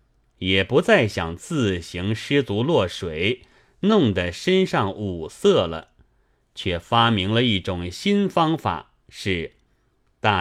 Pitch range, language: 95-140 Hz, Chinese